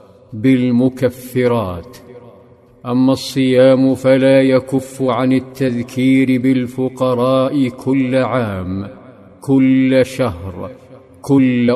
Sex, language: male, Arabic